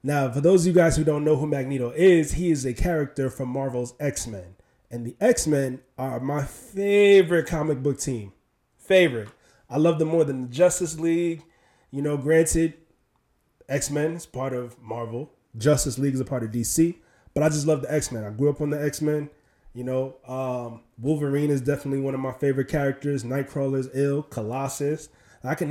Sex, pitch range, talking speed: male, 125-150 Hz, 190 wpm